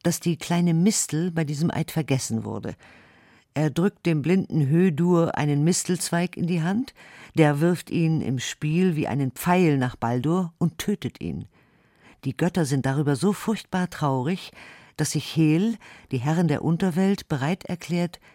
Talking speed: 155 wpm